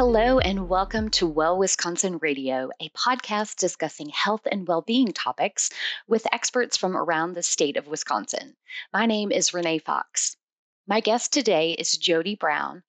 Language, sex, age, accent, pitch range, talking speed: English, female, 30-49, American, 175-235 Hz, 155 wpm